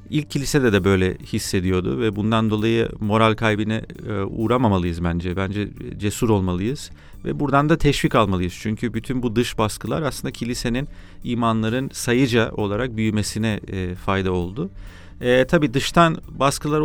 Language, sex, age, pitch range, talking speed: Turkish, male, 40-59, 100-125 Hz, 130 wpm